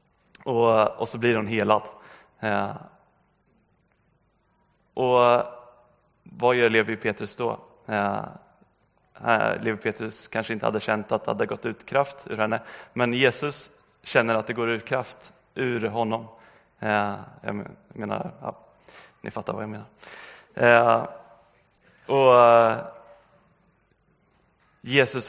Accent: native